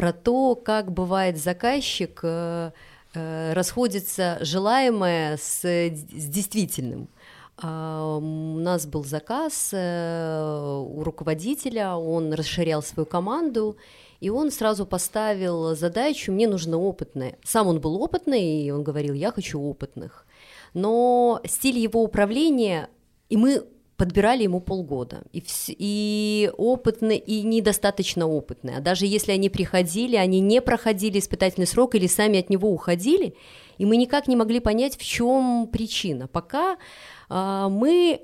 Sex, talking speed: female, 135 wpm